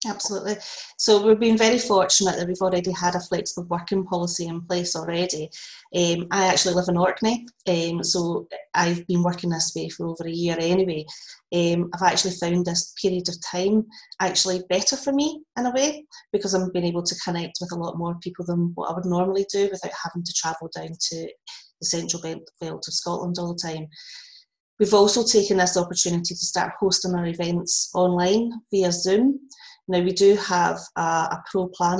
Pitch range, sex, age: 170-200 Hz, female, 30-49